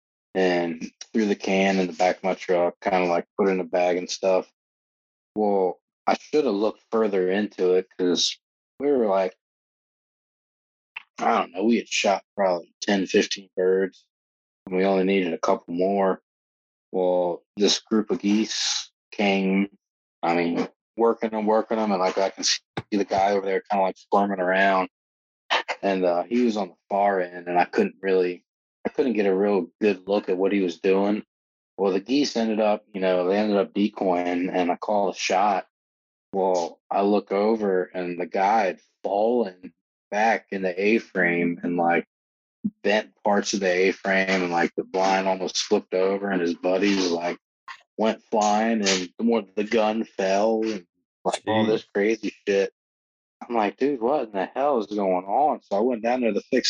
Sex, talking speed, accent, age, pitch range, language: male, 185 wpm, American, 20-39, 90-105 Hz, English